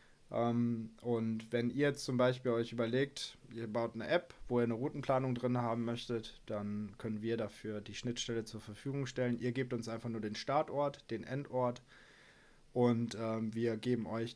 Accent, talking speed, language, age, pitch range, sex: German, 170 wpm, German, 20-39, 110-130 Hz, male